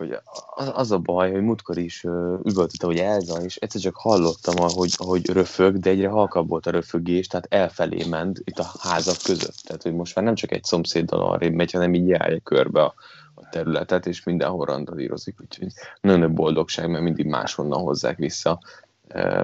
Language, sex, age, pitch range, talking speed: Hungarian, male, 20-39, 85-105 Hz, 180 wpm